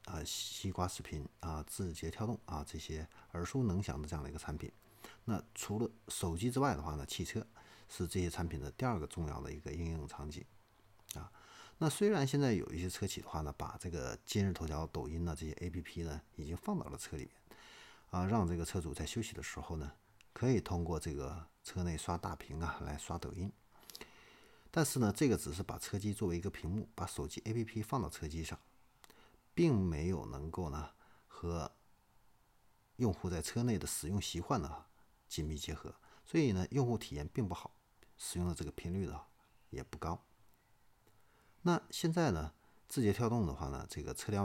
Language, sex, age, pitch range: Chinese, male, 50-69, 80-105 Hz